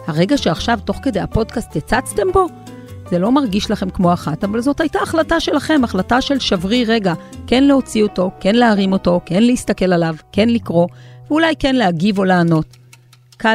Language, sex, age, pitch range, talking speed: Hebrew, female, 40-59, 170-235 Hz, 175 wpm